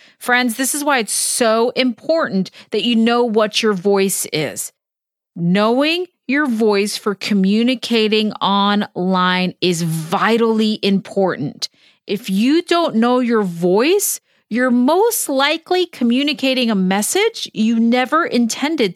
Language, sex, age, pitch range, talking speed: English, female, 40-59, 200-275 Hz, 120 wpm